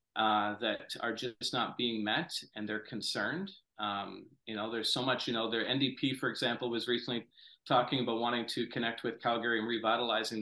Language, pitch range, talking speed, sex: English, 110-140 Hz, 190 wpm, male